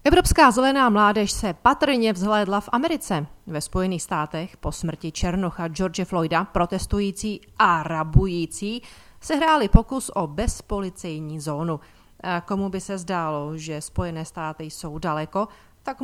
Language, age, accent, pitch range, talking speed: Czech, 40-59, native, 165-220 Hz, 130 wpm